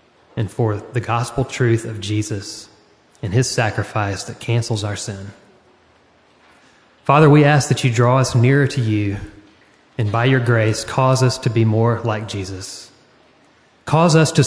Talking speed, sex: 160 wpm, male